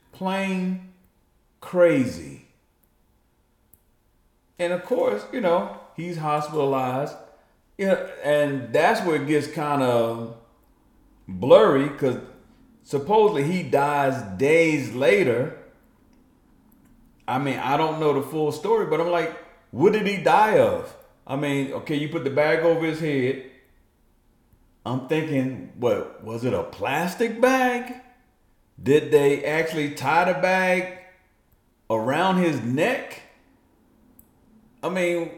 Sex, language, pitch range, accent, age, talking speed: male, English, 140-210 Hz, American, 40-59, 120 wpm